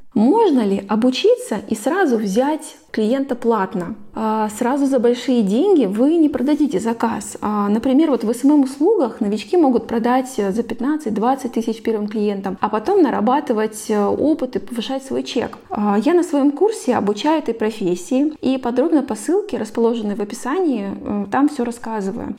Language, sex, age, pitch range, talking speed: Russian, female, 20-39, 220-265 Hz, 140 wpm